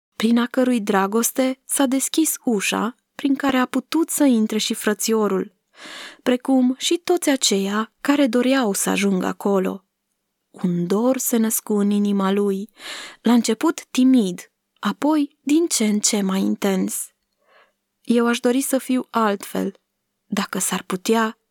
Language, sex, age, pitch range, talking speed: Romanian, female, 20-39, 200-260 Hz, 140 wpm